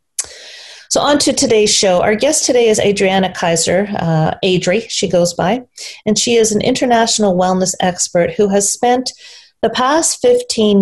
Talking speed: 160 wpm